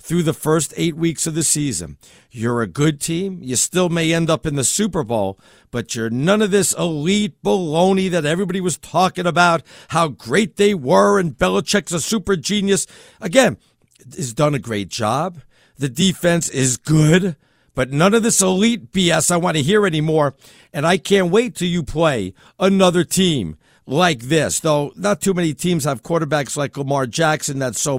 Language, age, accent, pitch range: English, 50-69, American, 135-180 Hz